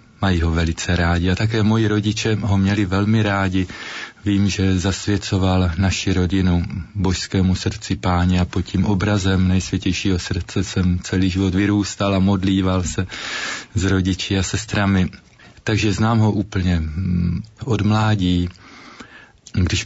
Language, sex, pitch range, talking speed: Slovak, male, 90-100 Hz, 135 wpm